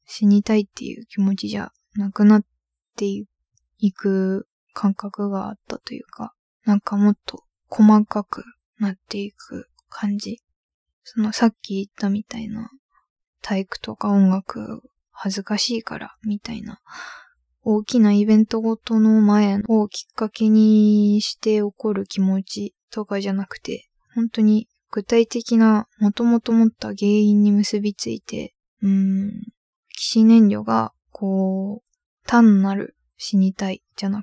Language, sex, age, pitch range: Japanese, female, 20-39, 200-225 Hz